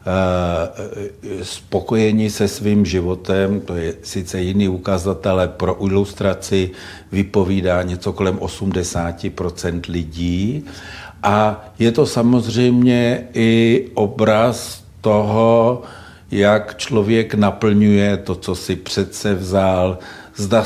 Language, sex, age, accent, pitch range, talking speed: Czech, male, 60-79, native, 90-110 Hz, 95 wpm